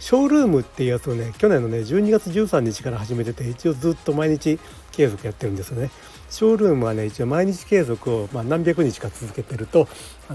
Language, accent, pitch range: Japanese, native, 115-160 Hz